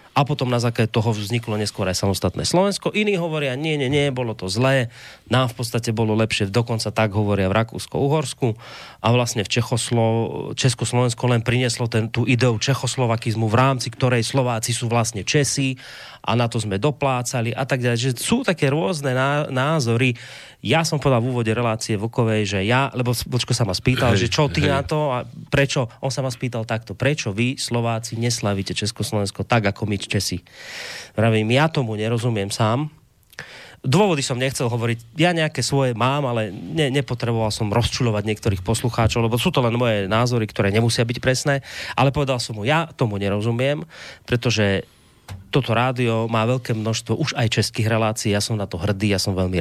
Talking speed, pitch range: 180 wpm, 110-130 Hz